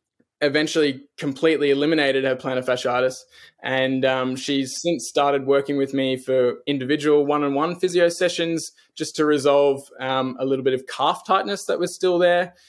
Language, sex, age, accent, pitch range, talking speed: English, male, 20-39, Australian, 135-160 Hz, 155 wpm